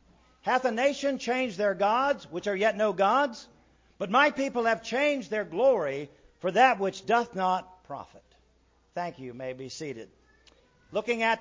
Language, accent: English, American